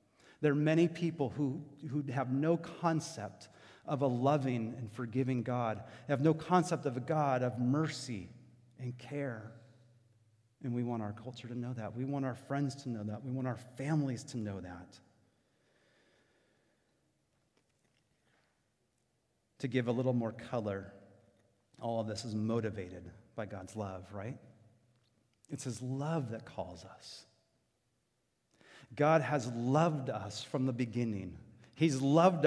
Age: 30-49